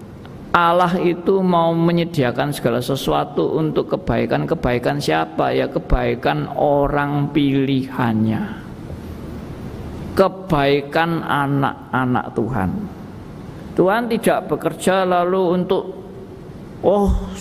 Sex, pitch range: male, 135-195 Hz